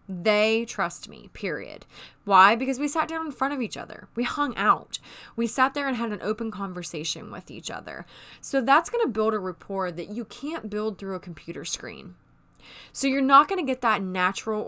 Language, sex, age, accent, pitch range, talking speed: English, female, 20-39, American, 185-260 Hz, 210 wpm